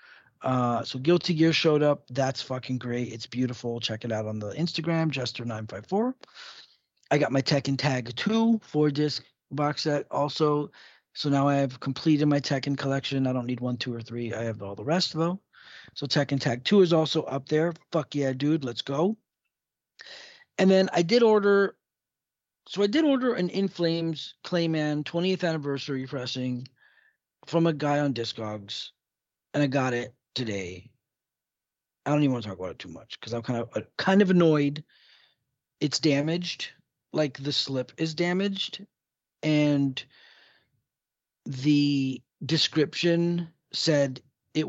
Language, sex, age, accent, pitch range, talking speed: English, male, 40-59, American, 130-165 Hz, 155 wpm